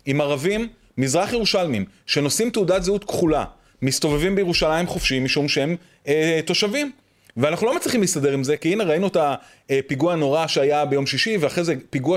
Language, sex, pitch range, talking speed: Hebrew, male, 150-230 Hz, 165 wpm